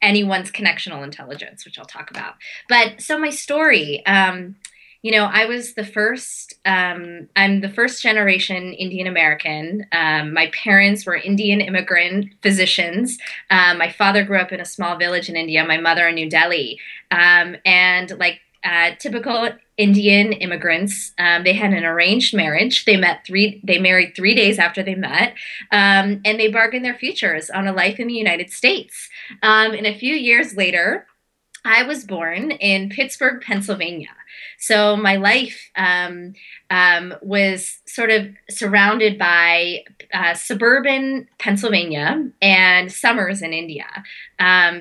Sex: female